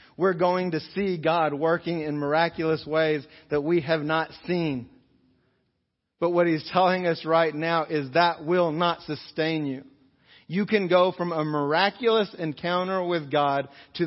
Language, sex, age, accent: English, male, 40-59, American